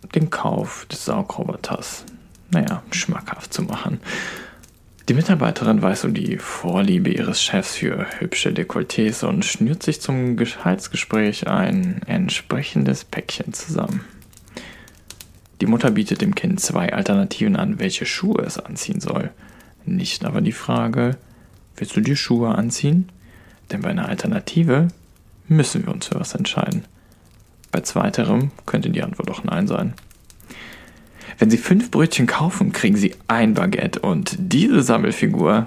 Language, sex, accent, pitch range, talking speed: German, male, German, 115-195 Hz, 135 wpm